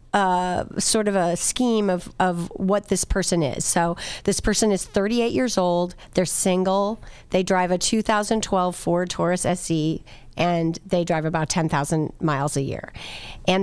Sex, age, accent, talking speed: female, 40-59, American, 160 wpm